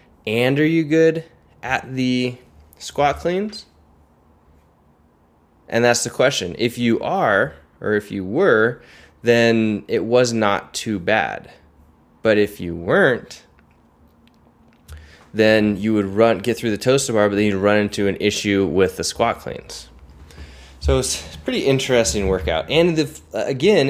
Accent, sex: American, male